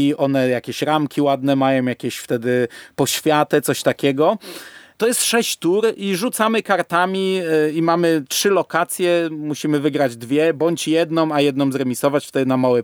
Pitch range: 135-165 Hz